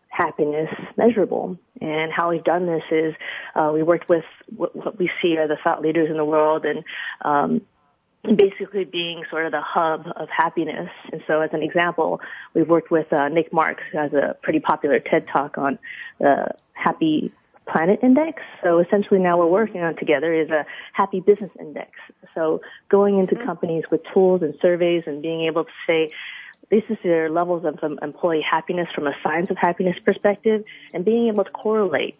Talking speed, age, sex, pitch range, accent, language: 185 wpm, 30-49, female, 155-190 Hz, American, English